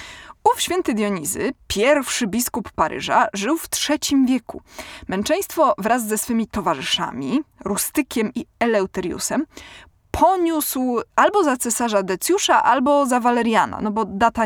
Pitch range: 215-305 Hz